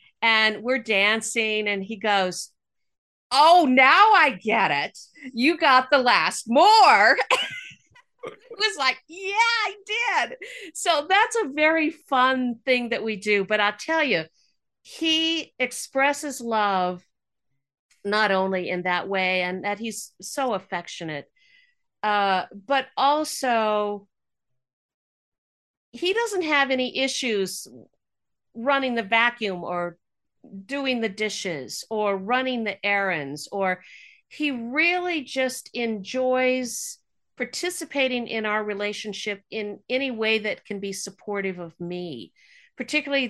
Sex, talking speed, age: female, 120 wpm, 50-69